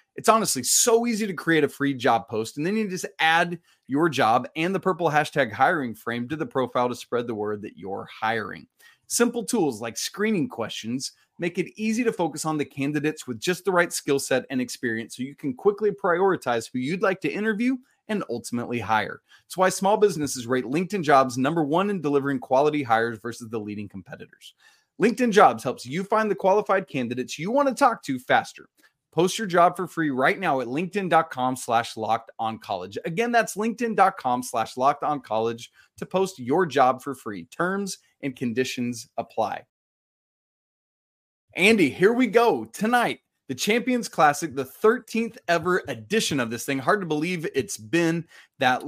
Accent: American